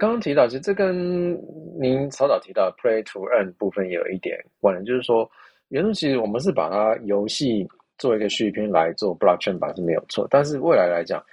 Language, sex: Chinese, male